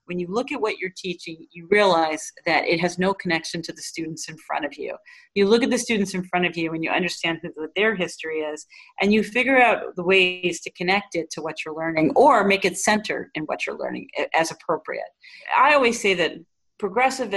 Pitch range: 165-215 Hz